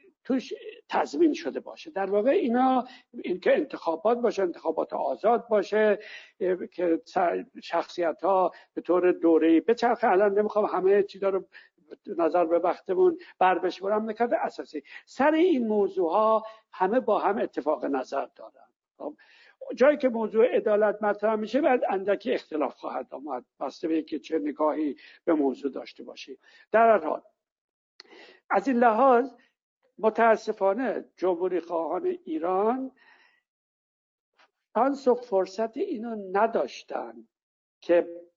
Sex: male